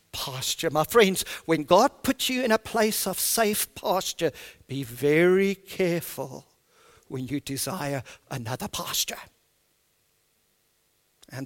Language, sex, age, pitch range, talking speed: English, male, 50-69, 130-190 Hz, 115 wpm